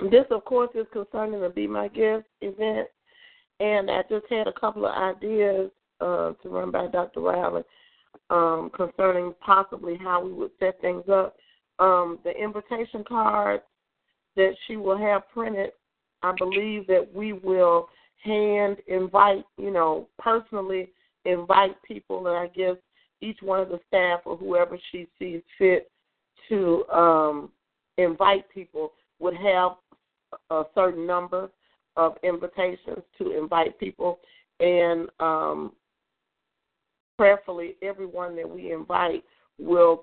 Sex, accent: female, American